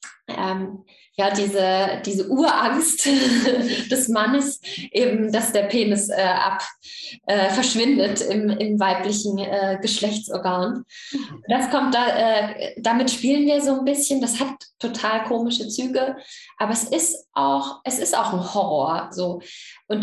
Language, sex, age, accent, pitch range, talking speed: German, female, 10-29, German, 200-250 Hz, 140 wpm